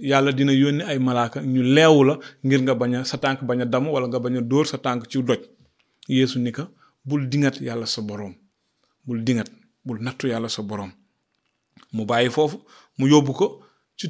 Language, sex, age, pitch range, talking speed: French, male, 30-49, 125-160 Hz, 180 wpm